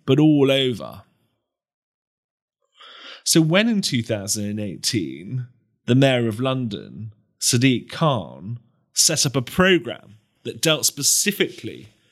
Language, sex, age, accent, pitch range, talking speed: English, male, 30-49, British, 115-165 Hz, 100 wpm